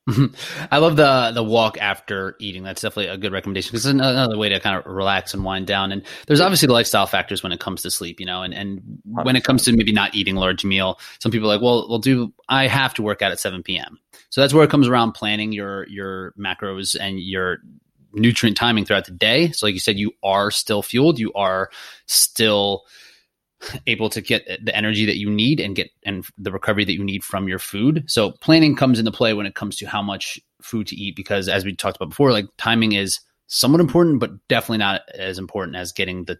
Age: 30-49